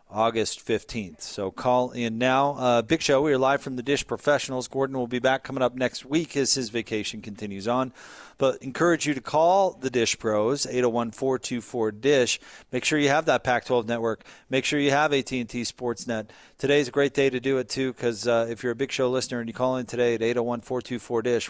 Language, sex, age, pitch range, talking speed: English, male, 40-59, 110-130 Hz, 205 wpm